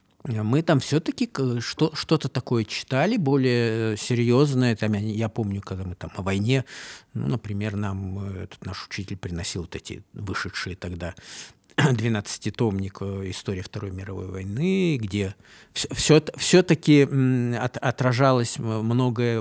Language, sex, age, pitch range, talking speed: Russian, male, 50-69, 105-145 Hz, 110 wpm